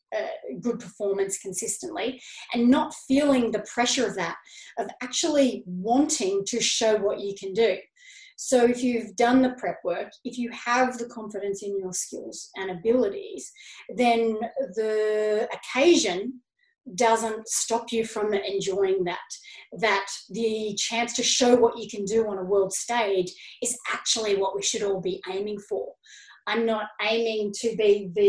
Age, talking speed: 30-49, 155 wpm